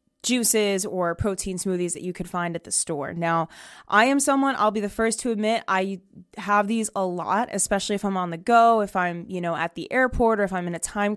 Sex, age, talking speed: female, 20-39, 240 wpm